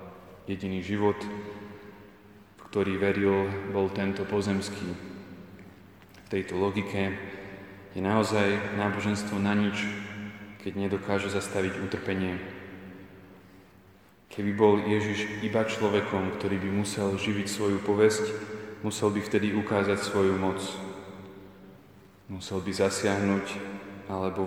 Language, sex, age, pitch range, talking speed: Slovak, male, 20-39, 95-105 Hz, 100 wpm